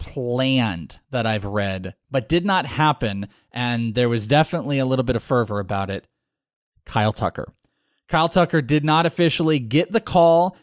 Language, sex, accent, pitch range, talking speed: English, male, American, 115-145 Hz, 165 wpm